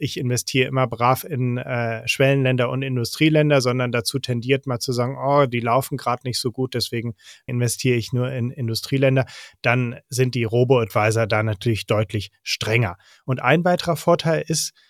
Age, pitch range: 30-49, 115-135 Hz